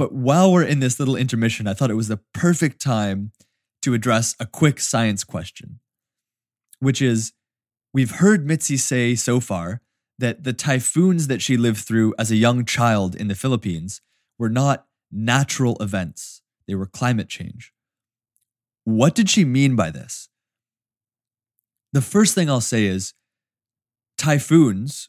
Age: 20-39